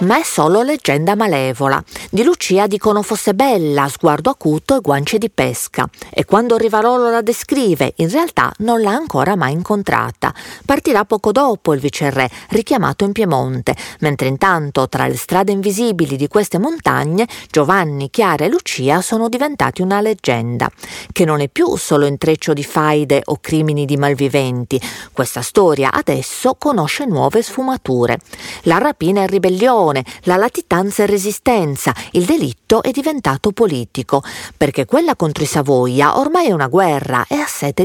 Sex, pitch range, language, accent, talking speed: female, 145-225 Hz, Italian, native, 150 wpm